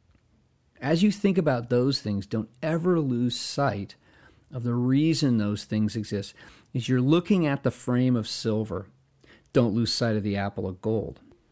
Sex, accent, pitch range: male, American, 105-130 Hz